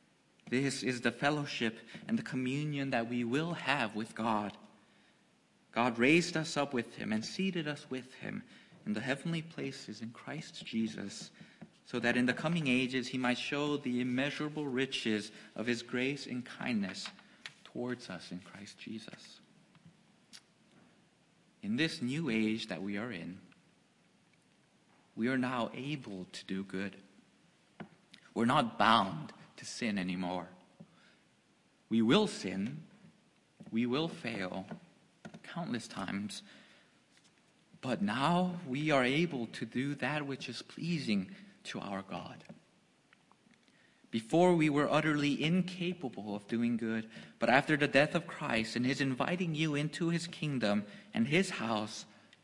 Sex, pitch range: male, 115-170 Hz